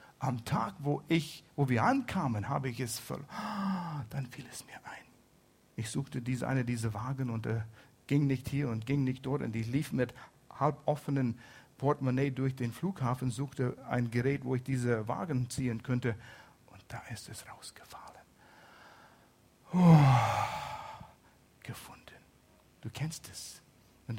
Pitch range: 120-145 Hz